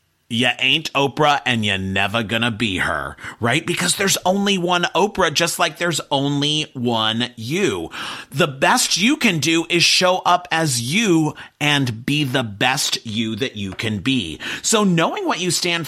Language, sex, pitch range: English, male, 125-175 Hz